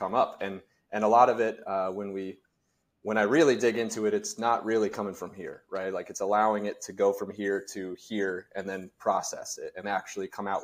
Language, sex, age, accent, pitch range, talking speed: English, male, 30-49, American, 95-115 Hz, 235 wpm